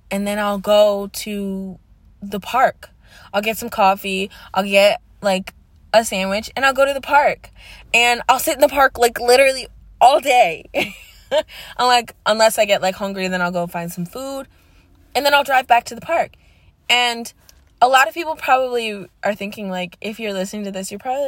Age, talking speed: 20-39, 195 wpm